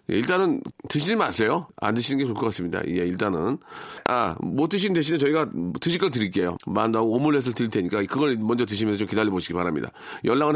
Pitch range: 110-160 Hz